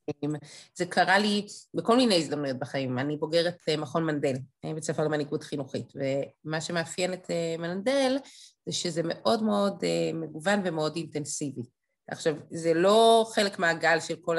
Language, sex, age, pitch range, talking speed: Hebrew, female, 30-49, 155-200 Hz, 135 wpm